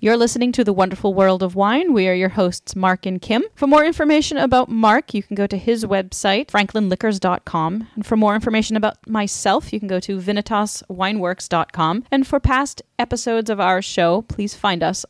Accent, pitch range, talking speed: American, 160-205 Hz, 190 wpm